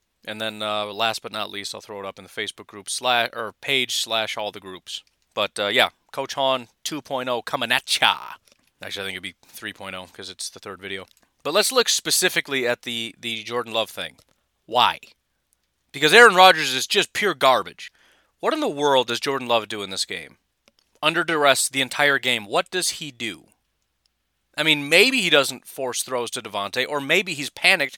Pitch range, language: 120-165 Hz, English